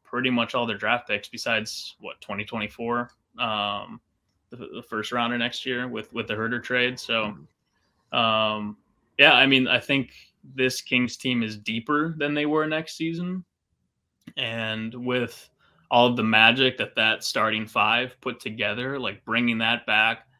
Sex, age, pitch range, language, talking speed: male, 20-39, 105-125 Hz, English, 160 wpm